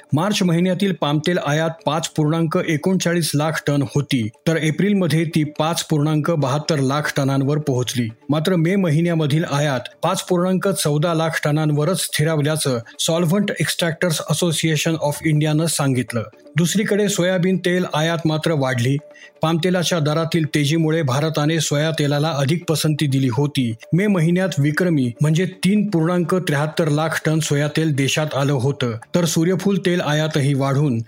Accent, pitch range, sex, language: native, 145-170 Hz, male, Marathi